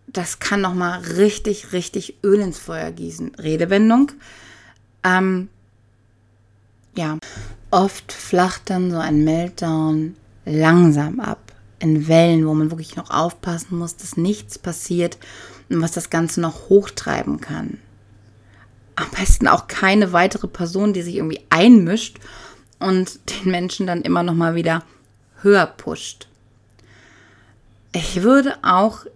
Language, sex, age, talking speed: German, female, 30-49, 125 wpm